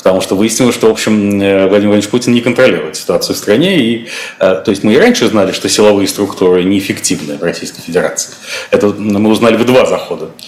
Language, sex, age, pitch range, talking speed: Russian, male, 30-49, 100-120 Hz, 190 wpm